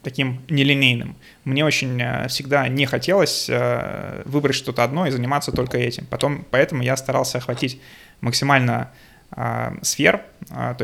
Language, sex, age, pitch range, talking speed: Russian, male, 20-39, 125-145 Hz, 115 wpm